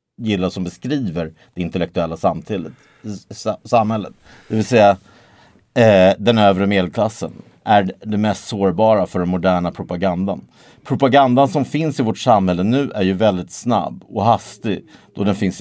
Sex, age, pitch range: male, 50-69, 95-110 Hz